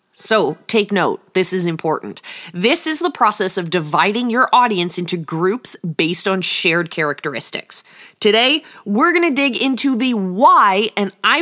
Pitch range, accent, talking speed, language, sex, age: 185-255 Hz, American, 160 wpm, English, female, 20-39